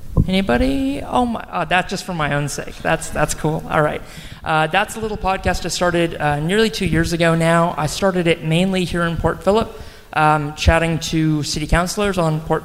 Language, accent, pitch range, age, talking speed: English, American, 155-185 Hz, 30-49, 200 wpm